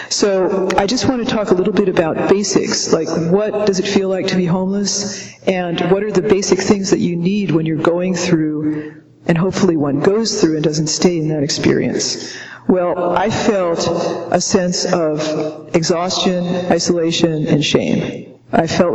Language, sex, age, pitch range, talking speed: English, female, 50-69, 165-190 Hz, 175 wpm